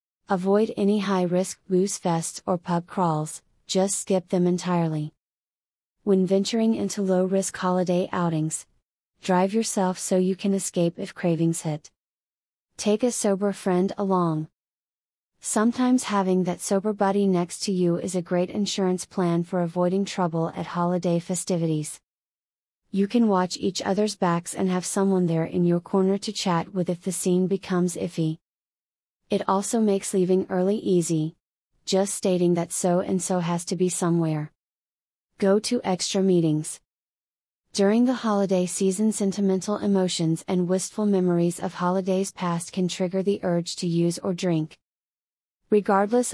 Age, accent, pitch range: 30-49, American, 175-195 Hz